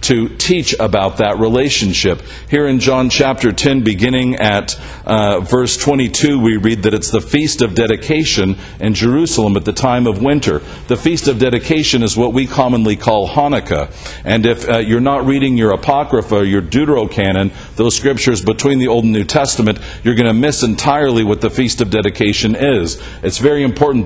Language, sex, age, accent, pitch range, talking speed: English, male, 50-69, American, 105-130 Hz, 180 wpm